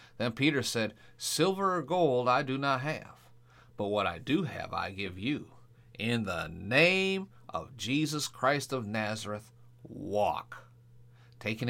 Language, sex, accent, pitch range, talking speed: English, male, American, 110-140 Hz, 145 wpm